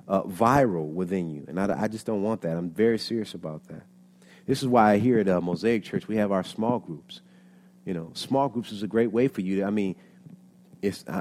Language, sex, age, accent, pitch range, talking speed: English, male, 30-49, American, 95-135 Hz, 235 wpm